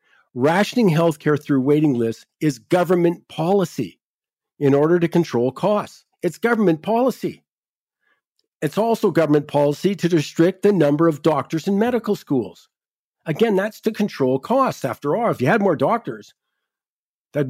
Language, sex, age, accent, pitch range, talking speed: English, male, 50-69, American, 135-180 Hz, 145 wpm